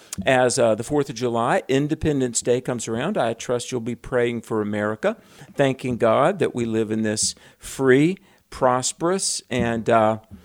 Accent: American